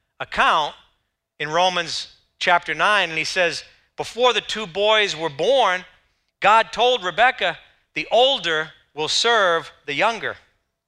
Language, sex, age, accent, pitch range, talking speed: English, male, 40-59, American, 155-220 Hz, 125 wpm